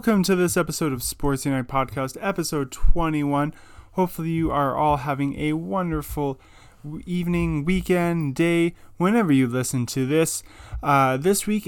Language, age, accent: English, 20-39, American